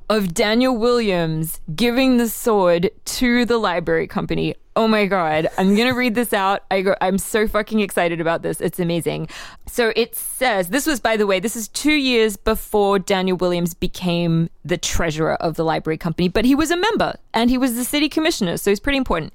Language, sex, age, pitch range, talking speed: English, female, 20-39, 185-285 Hz, 200 wpm